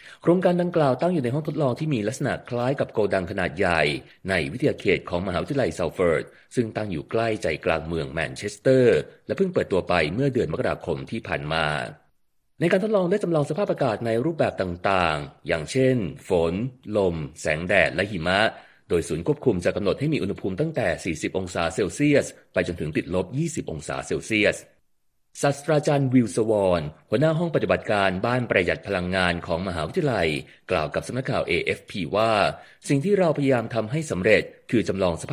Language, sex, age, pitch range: Thai, male, 30-49, 90-145 Hz